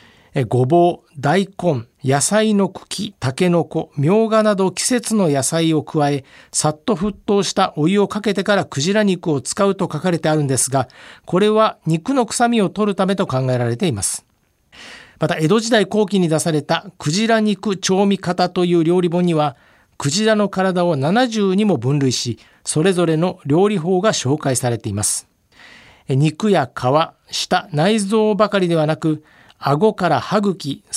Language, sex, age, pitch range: Japanese, male, 50-69, 150-200 Hz